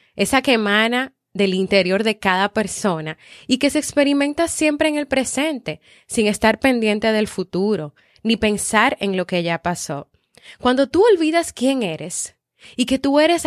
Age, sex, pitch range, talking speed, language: 20-39, female, 185-250 Hz, 165 wpm, Spanish